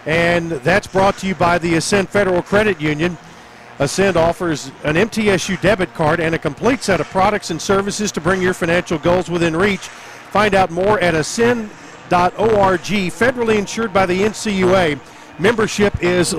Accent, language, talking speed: American, English, 160 wpm